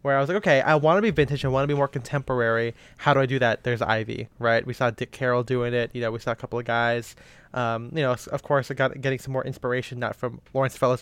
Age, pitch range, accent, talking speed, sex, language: 20-39, 125-160 Hz, American, 290 wpm, male, English